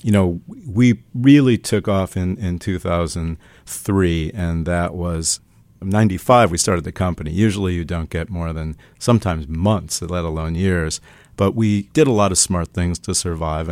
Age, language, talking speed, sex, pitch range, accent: 50-69, English, 180 wpm, male, 85-105 Hz, American